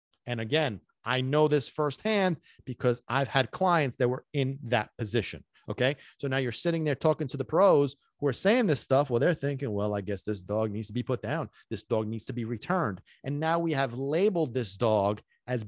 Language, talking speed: English, 220 wpm